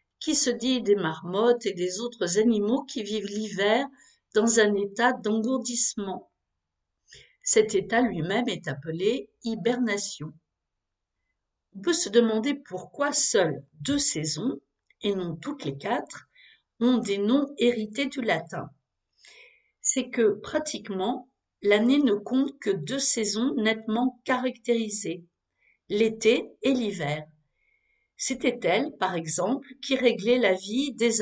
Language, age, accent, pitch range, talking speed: French, 50-69, French, 195-250 Hz, 125 wpm